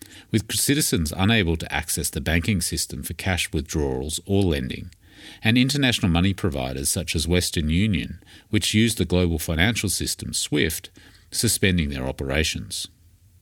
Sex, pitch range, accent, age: male, 80-100 Hz, Australian, 40-59